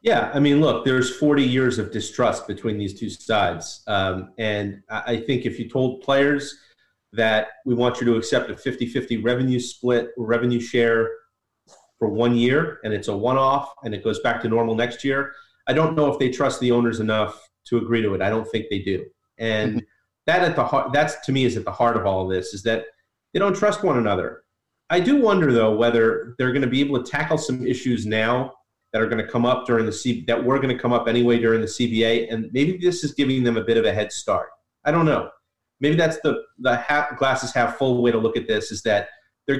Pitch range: 110-130 Hz